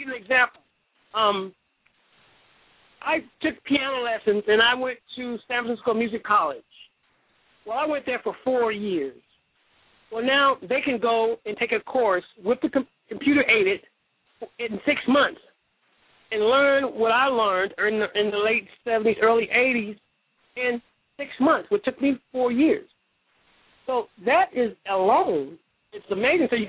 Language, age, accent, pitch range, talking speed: English, 50-69, American, 225-300 Hz, 155 wpm